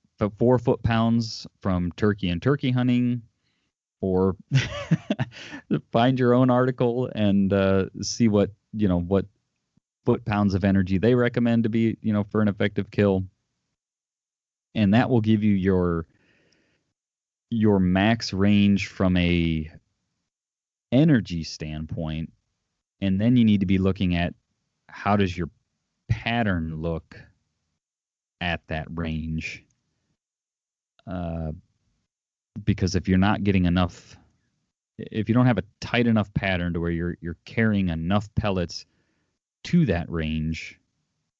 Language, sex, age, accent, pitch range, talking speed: English, male, 30-49, American, 85-110 Hz, 130 wpm